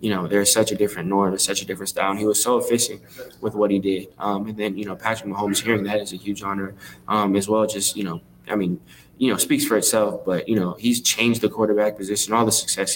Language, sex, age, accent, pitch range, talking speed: English, male, 20-39, American, 100-110 Hz, 270 wpm